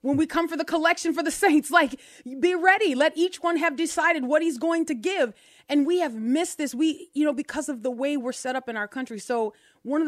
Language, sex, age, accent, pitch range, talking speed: English, female, 30-49, American, 230-300 Hz, 255 wpm